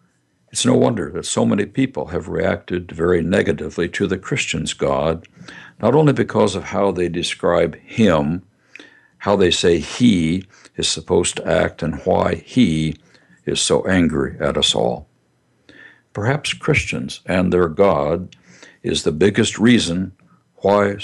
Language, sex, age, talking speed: English, male, 60-79, 145 wpm